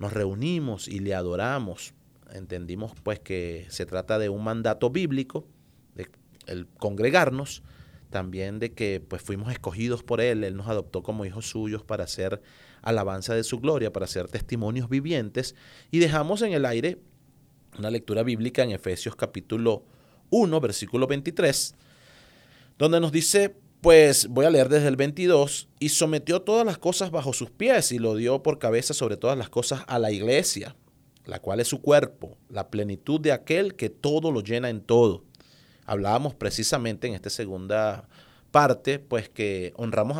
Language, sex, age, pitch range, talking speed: English, male, 30-49, 110-145 Hz, 165 wpm